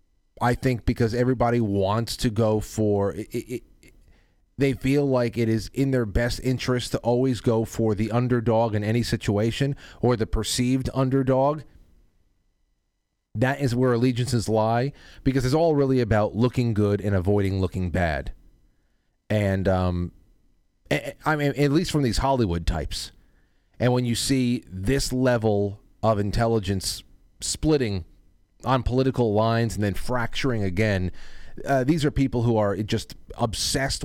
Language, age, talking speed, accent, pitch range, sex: English, 30-49, 145 wpm, American, 100-130 Hz, male